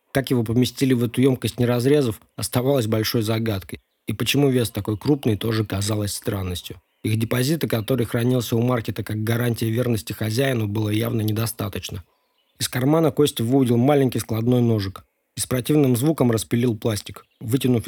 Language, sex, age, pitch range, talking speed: Russian, male, 20-39, 105-130 Hz, 155 wpm